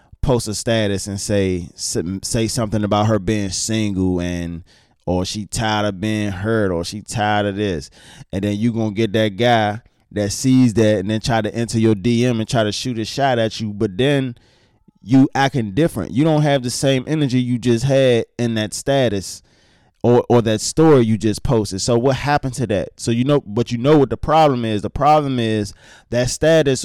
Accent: American